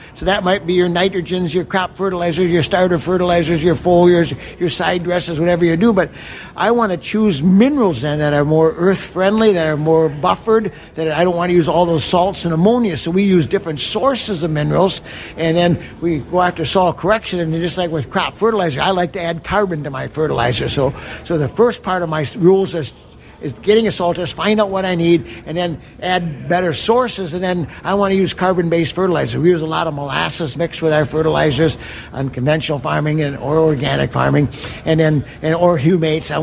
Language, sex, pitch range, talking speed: English, male, 155-185 Hz, 210 wpm